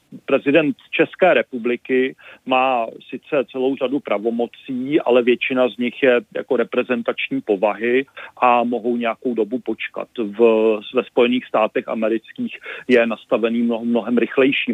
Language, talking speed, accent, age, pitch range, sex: Czech, 125 wpm, native, 40-59, 110-135 Hz, male